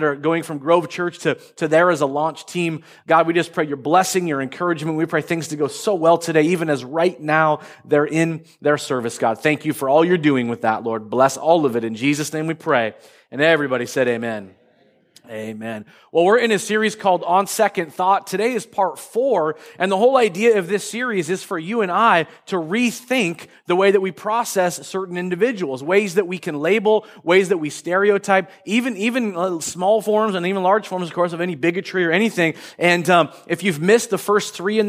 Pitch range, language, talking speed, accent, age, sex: 145-195 Hz, English, 220 wpm, American, 30-49, male